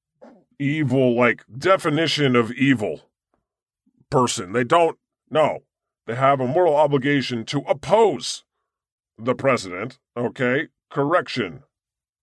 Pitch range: 110-145 Hz